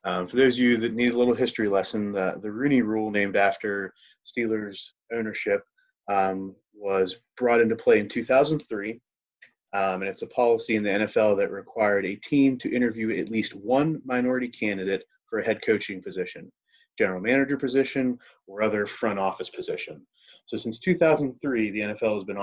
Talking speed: 175 wpm